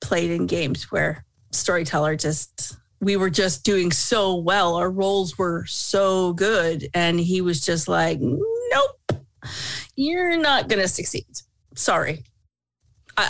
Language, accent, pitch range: English, American, 170-210 Hz